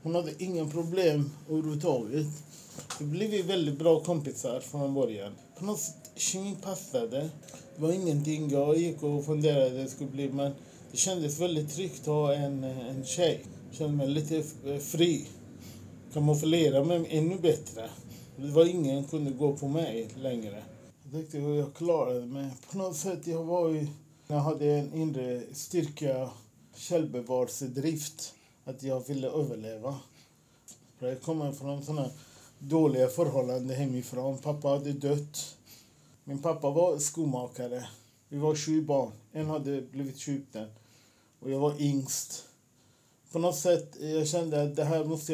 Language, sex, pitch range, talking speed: Swedish, male, 130-155 Hz, 155 wpm